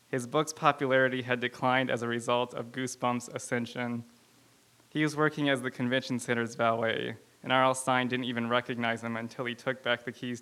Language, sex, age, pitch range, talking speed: English, male, 20-39, 120-130 Hz, 185 wpm